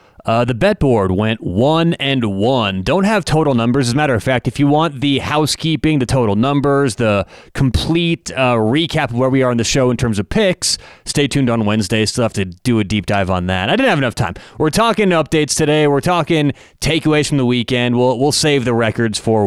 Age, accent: 30-49, American